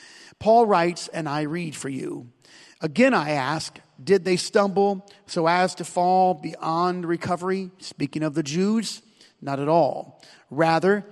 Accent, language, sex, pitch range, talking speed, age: American, English, male, 150-200 Hz, 145 wpm, 40-59